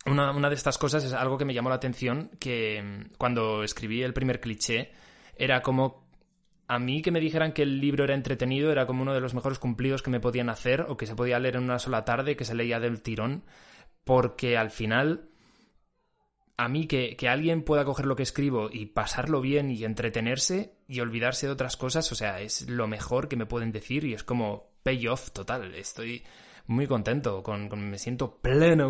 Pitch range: 115-145 Hz